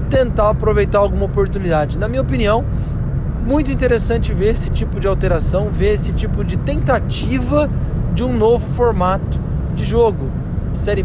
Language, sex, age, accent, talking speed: Portuguese, male, 20-39, Brazilian, 140 wpm